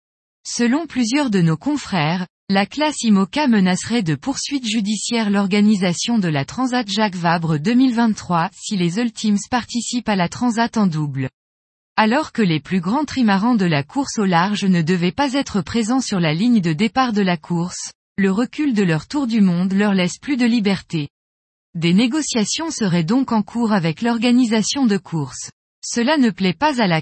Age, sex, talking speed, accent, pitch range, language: 20-39, female, 180 wpm, French, 180-245 Hz, French